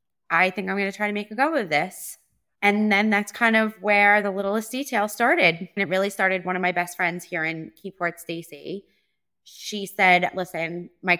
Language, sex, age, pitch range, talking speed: English, female, 20-39, 175-220 Hz, 210 wpm